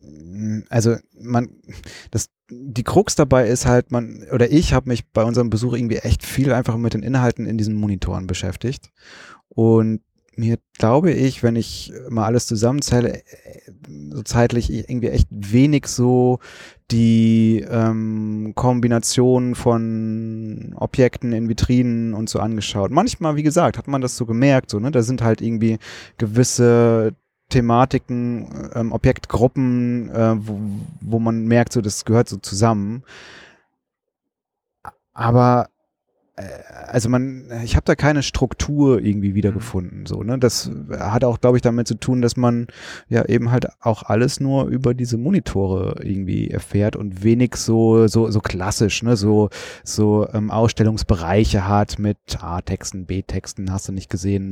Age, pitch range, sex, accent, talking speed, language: 30-49, 105-125 Hz, male, German, 150 wpm, German